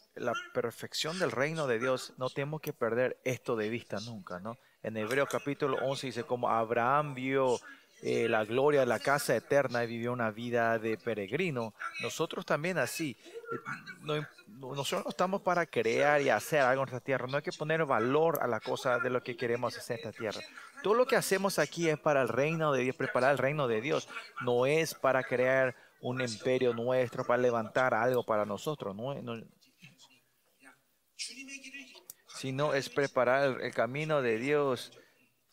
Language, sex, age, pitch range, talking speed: Spanish, male, 40-59, 120-160 Hz, 180 wpm